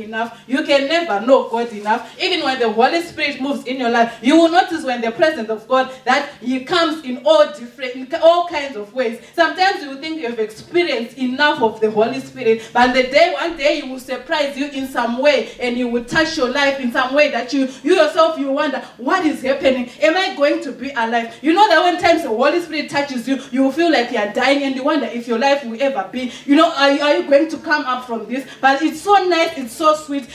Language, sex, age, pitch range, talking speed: English, female, 20-39, 250-320 Hz, 245 wpm